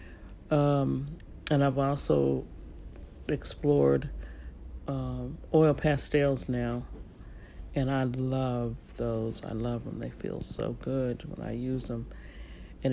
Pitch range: 95-145 Hz